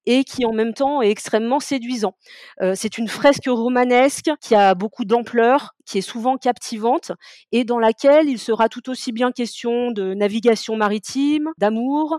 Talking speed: 165 wpm